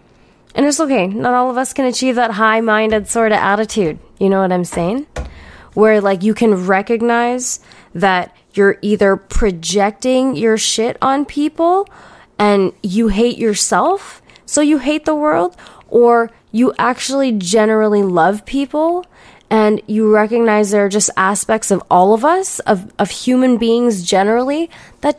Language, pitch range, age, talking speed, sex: English, 195-255 Hz, 20-39, 150 wpm, female